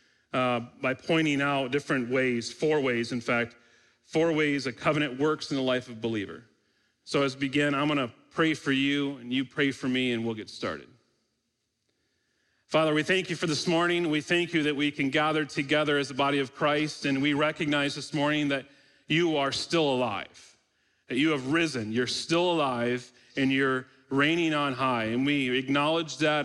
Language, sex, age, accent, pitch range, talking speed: English, male, 40-59, American, 125-150 Hz, 195 wpm